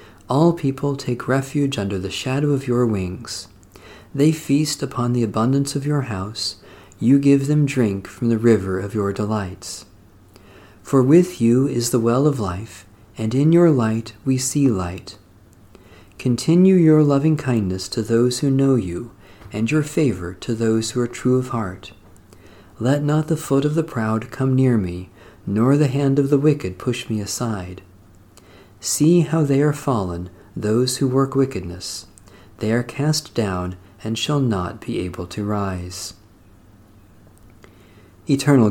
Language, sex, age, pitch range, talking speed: English, male, 40-59, 100-140 Hz, 160 wpm